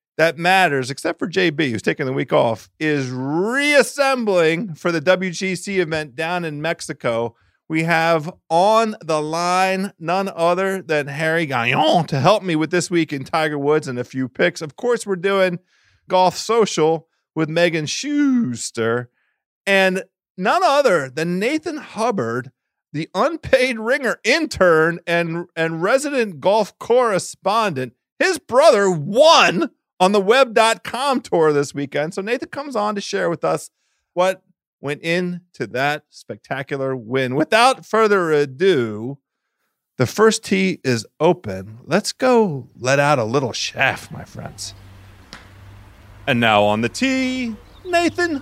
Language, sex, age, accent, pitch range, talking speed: English, male, 40-59, American, 145-215 Hz, 140 wpm